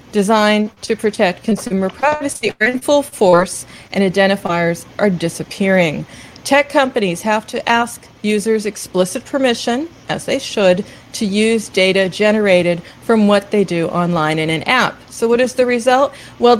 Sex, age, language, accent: female, 40-59, English, American